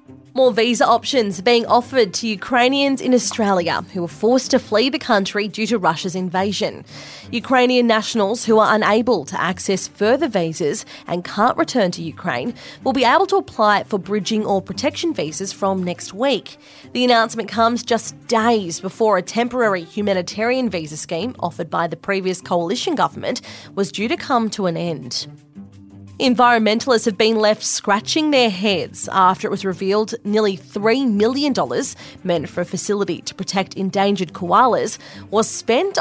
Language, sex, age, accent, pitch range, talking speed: English, female, 20-39, Australian, 185-245 Hz, 160 wpm